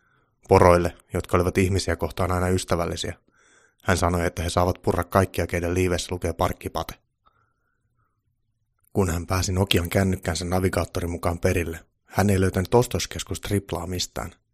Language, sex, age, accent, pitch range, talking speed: Finnish, male, 30-49, native, 85-105 Hz, 130 wpm